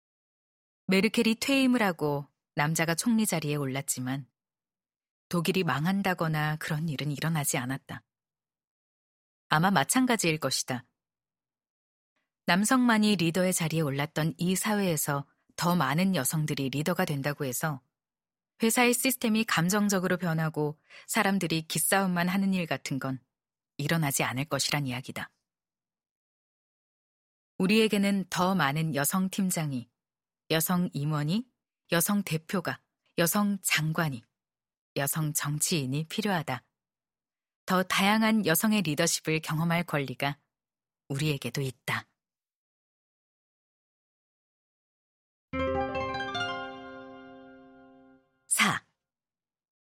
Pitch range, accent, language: 140-195 Hz, native, Korean